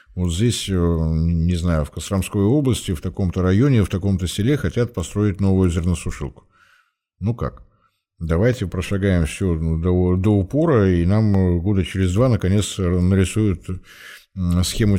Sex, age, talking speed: male, 60-79, 130 wpm